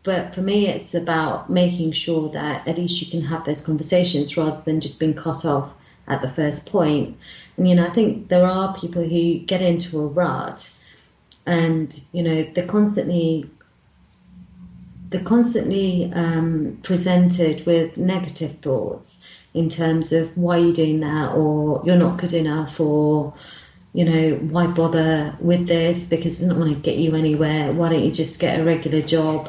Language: English